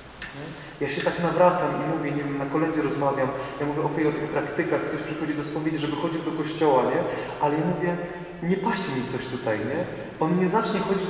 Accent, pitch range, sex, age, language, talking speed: native, 135-180 Hz, male, 30-49, Polish, 215 wpm